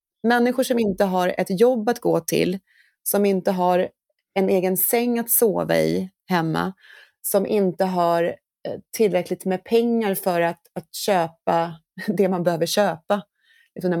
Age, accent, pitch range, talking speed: 30-49, native, 175-230 Hz, 145 wpm